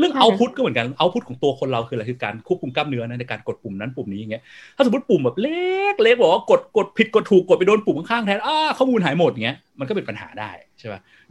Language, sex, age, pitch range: Thai, male, 30-49, 115-175 Hz